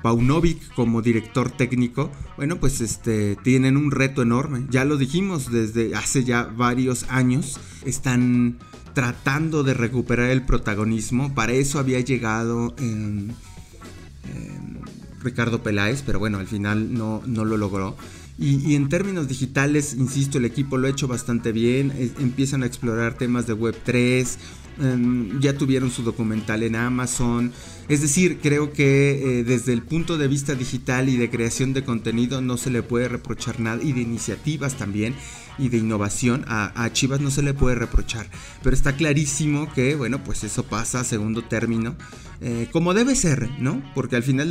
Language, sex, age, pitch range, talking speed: English, male, 30-49, 115-140 Hz, 165 wpm